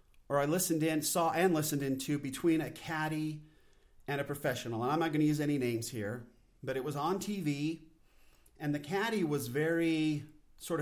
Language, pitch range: English, 125-165 Hz